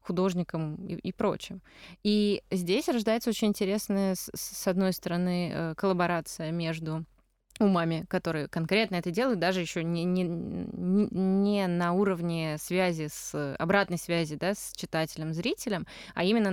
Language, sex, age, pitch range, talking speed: Russian, female, 20-39, 165-195 Hz, 125 wpm